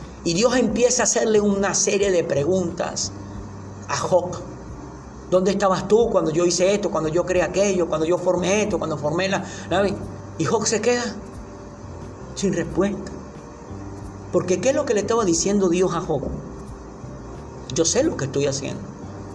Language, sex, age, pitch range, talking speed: Spanish, male, 50-69, 150-195 Hz, 165 wpm